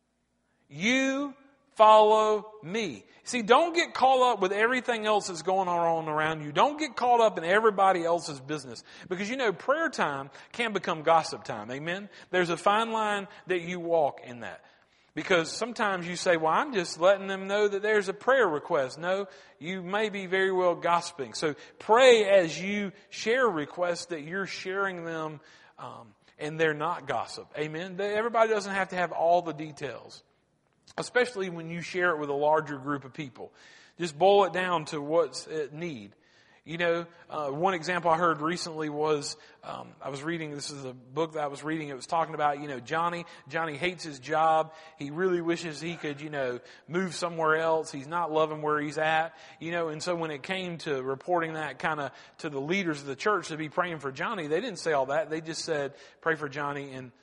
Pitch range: 155-195 Hz